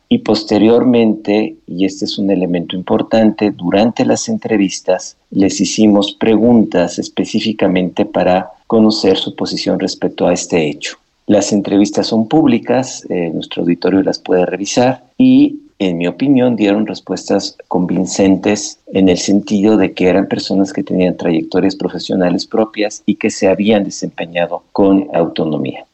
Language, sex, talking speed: Spanish, male, 135 wpm